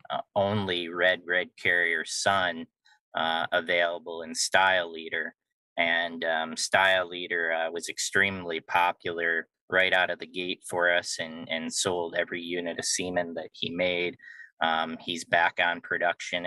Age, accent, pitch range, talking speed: 20-39, American, 85-95 Hz, 150 wpm